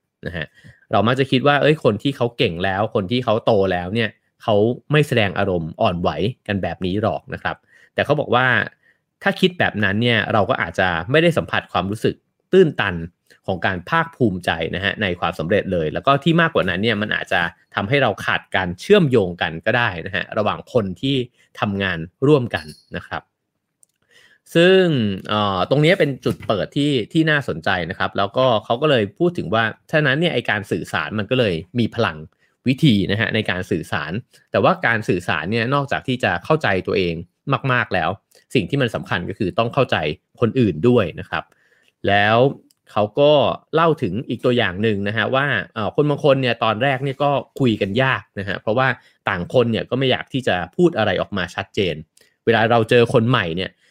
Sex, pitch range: male, 100-135 Hz